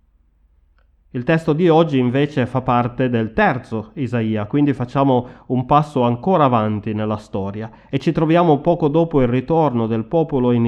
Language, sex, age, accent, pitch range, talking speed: Italian, male, 30-49, native, 110-140 Hz, 155 wpm